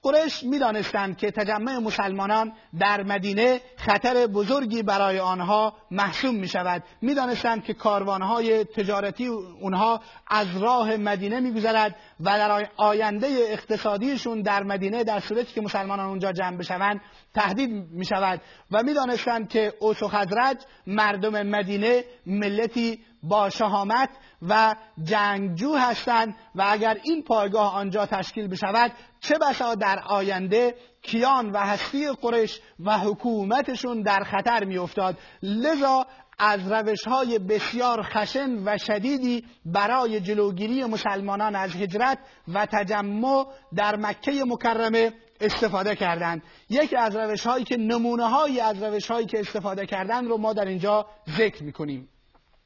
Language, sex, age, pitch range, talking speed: Persian, male, 30-49, 205-240 Hz, 120 wpm